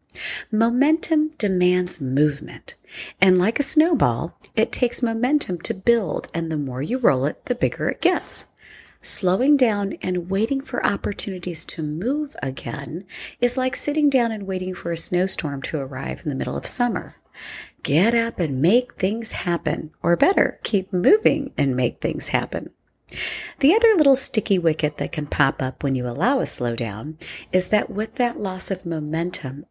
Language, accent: English, American